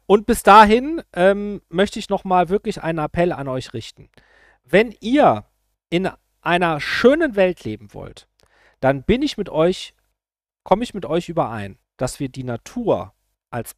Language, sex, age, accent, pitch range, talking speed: German, male, 40-59, German, 150-215 Hz, 155 wpm